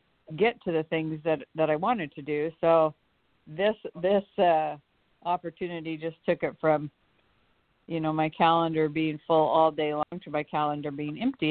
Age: 50-69